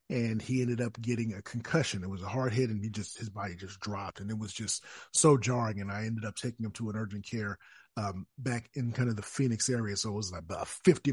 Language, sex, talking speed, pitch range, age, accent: English, male, 265 wpm, 115-140 Hz, 30-49, American